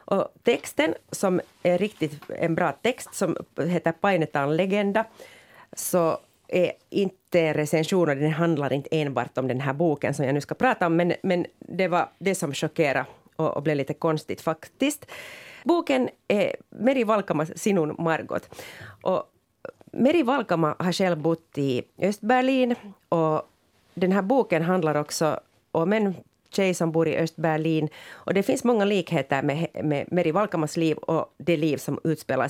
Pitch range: 160-210 Hz